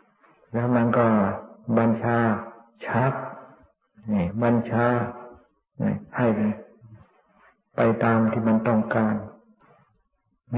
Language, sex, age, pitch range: Thai, male, 60-79, 110-120 Hz